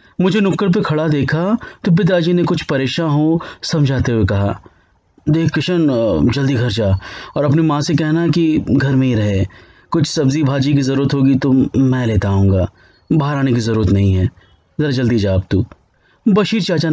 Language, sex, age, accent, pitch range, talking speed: Hindi, male, 30-49, native, 105-170 Hz, 185 wpm